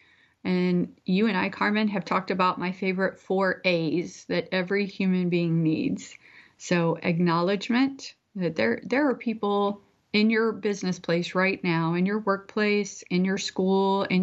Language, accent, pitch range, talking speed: English, American, 175-210 Hz, 155 wpm